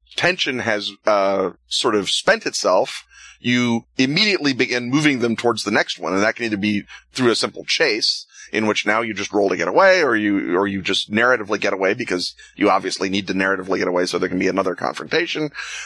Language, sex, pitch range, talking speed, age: English, male, 100-130 Hz, 210 wpm, 30-49